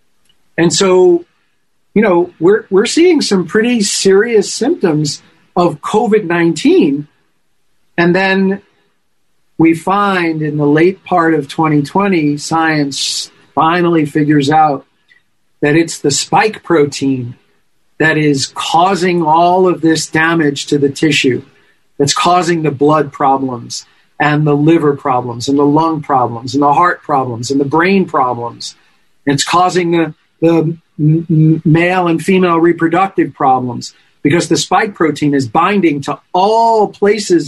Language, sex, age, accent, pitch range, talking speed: English, male, 40-59, American, 145-180 Hz, 130 wpm